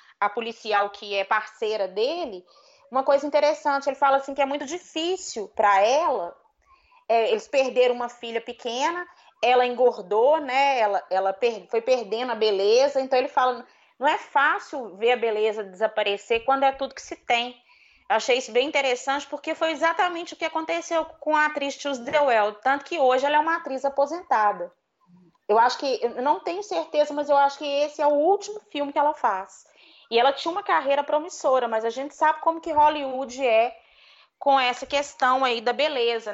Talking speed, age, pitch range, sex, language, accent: 185 wpm, 20-39, 230-300 Hz, female, Portuguese, Brazilian